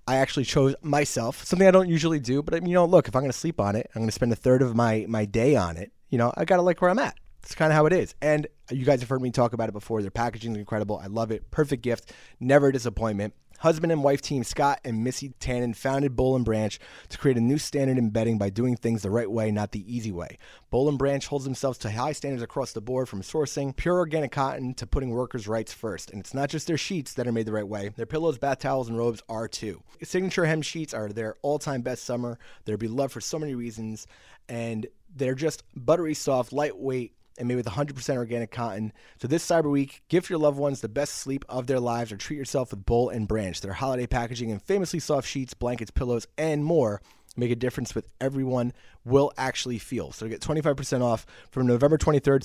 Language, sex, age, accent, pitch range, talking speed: English, male, 30-49, American, 115-145 Hz, 245 wpm